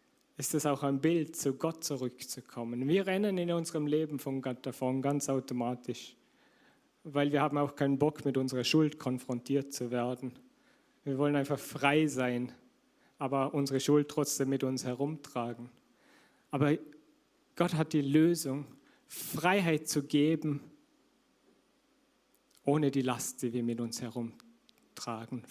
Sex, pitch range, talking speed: male, 140-200 Hz, 135 wpm